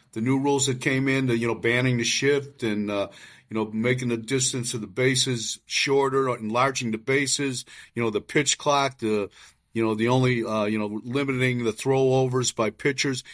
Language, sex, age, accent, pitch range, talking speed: English, male, 50-69, American, 115-135 Hz, 200 wpm